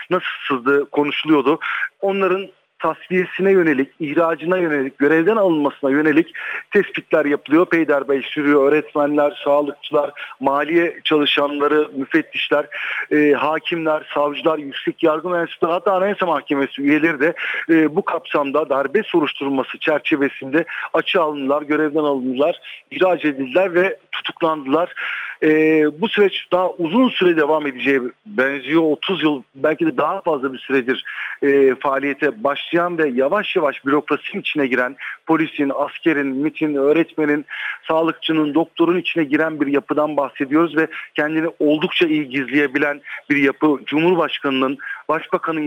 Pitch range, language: 140-170 Hz, Turkish